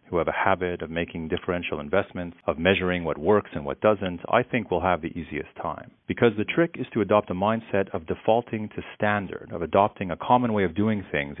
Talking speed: 220 wpm